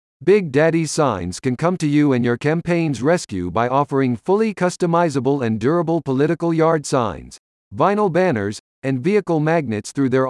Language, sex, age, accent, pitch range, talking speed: English, male, 50-69, American, 125-175 Hz, 155 wpm